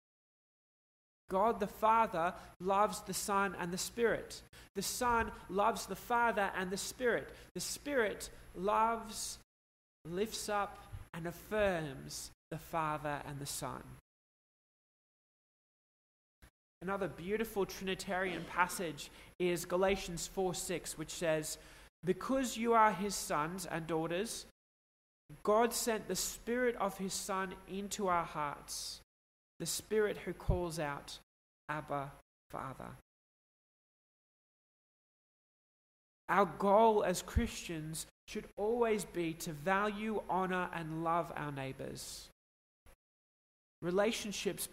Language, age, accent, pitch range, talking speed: English, 20-39, Australian, 160-205 Hz, 105 wpm